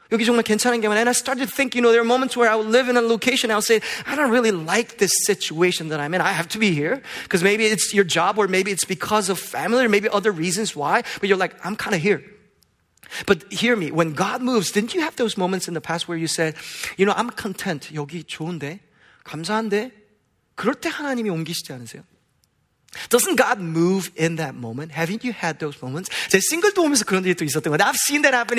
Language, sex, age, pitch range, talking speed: English, male, 30-49, 175-245 Hz, 205 wpm